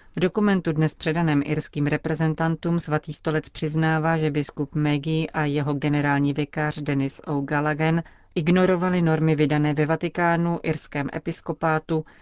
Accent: native